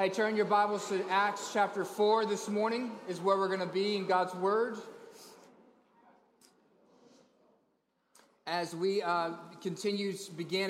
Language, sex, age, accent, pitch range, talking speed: English, male, 30-49, American, 160-190 Hz, 135 wpm